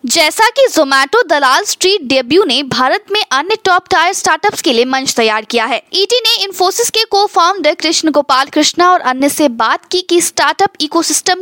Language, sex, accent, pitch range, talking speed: English, female, Indian, 280-370 Hz, 195 wpm